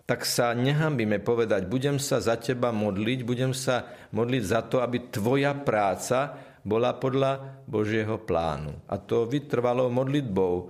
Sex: male